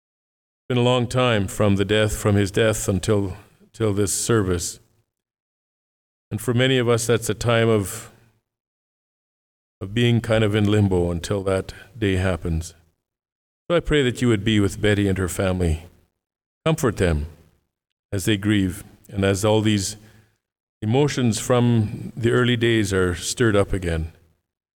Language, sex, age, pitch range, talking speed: English, male, 50-69, 90-115 Hz, 155 wpm